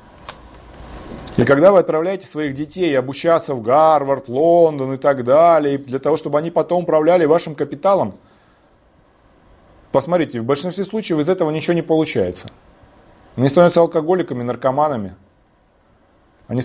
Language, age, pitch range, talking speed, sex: Russian, 30-49, 110-160 Hz, 125 wpm, male